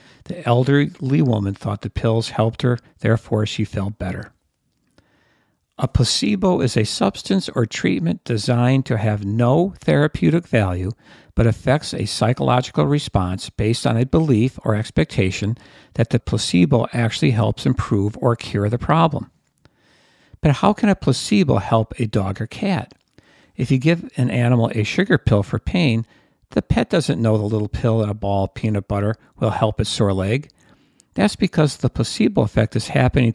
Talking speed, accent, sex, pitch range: 165 wpm, American, male, 105-135 Hz